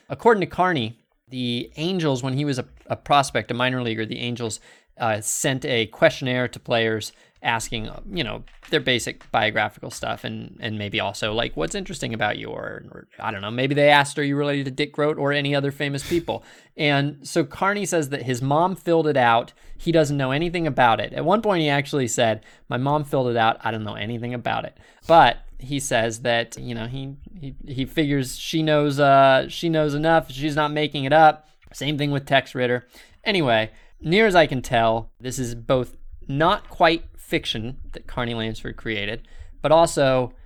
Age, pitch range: 20-39, 120-160 Hz